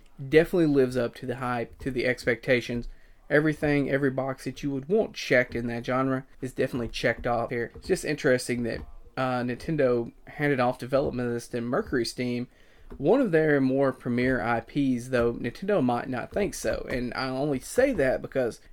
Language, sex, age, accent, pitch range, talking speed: English, male, 30-49, American, 125-145 Hz, 180 wpm